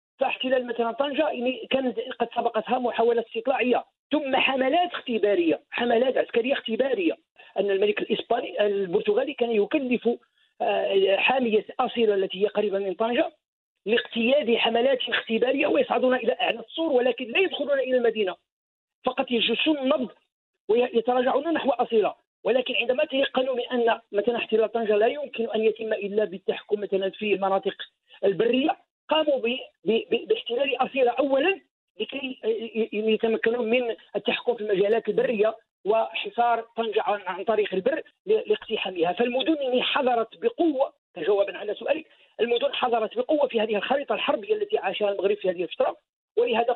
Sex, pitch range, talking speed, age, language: male, 205-275 Hz, 130 wpm, 40-59, Arabic